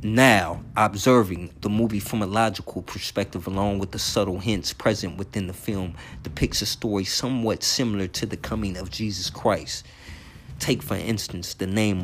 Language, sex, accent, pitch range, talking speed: English, male, American, 90-110 Hz, 165 wpm